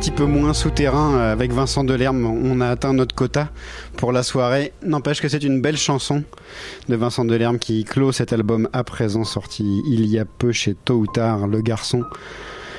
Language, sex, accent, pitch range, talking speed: French, male, French, 110-140 Hz, 195 wpm